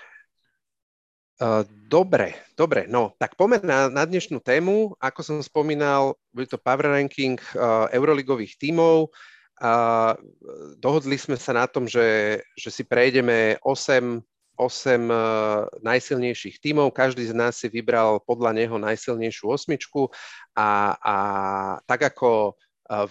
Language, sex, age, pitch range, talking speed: Slovak, male, 40-59, 110-135 Hz, 125 wpm